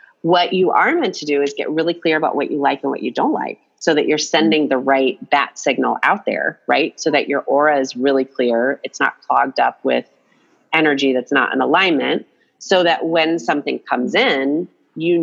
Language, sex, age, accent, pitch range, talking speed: English, female, 30-49, American, 135-165 Hz, 215 wpm